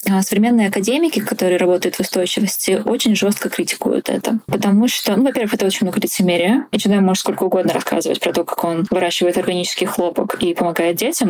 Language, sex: Russian, female